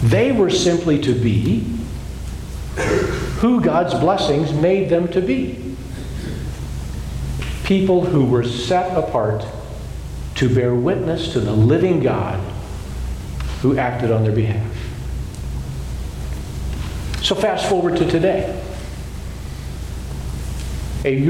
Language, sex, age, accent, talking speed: English, male, 50-69, American, 100 wpm